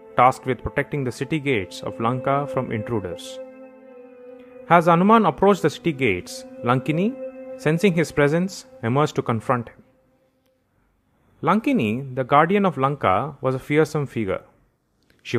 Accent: Indian